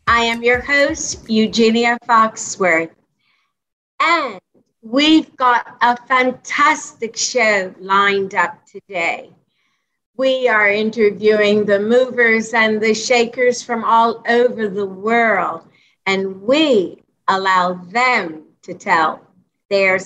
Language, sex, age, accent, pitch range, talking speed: English, female, 50-69, American, 210-265 Hz, 105 wpm